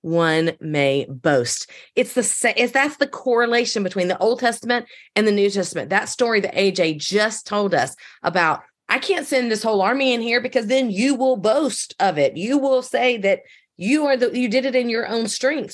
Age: 30-49